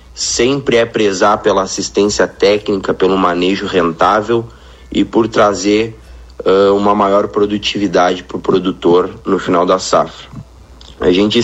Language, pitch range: Portuguese, 85-105 Hz